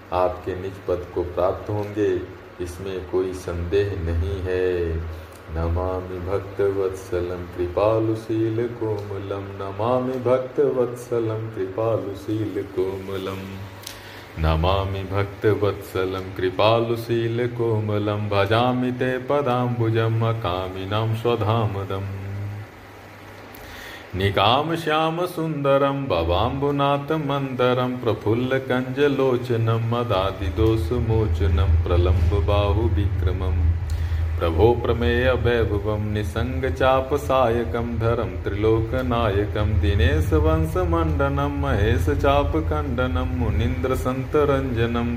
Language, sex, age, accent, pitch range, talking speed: Hindi, male, 40-59, native, 90-120 Hz, 55 wpm